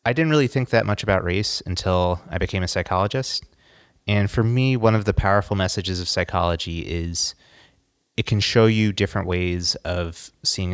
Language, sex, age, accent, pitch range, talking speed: English, male, 30-49, American, 90-105 Hz, 180 wpm